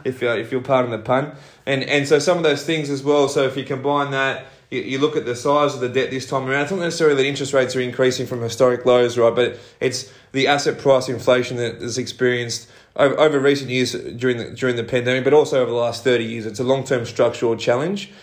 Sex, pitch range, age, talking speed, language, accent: male, 120-135 Hz, 20-39, 245 wpm, English, Australian